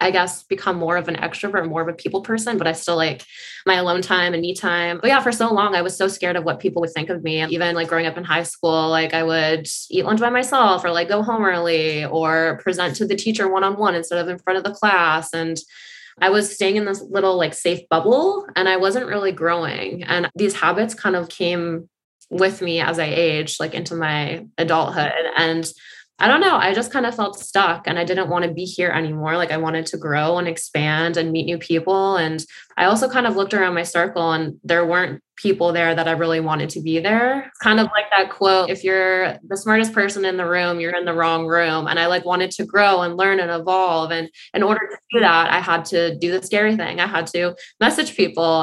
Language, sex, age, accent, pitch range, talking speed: English, female, 20-39, American, 165-190 Hz, 240 wpm